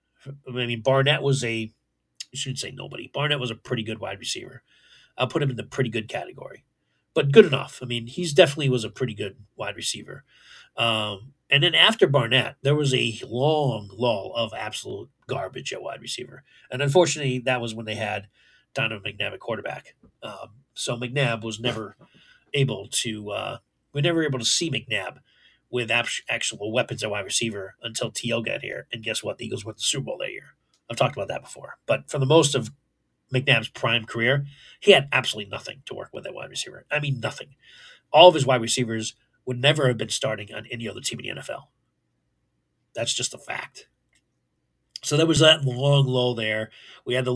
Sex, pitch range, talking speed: male, 115-145 Hz, 200 wpm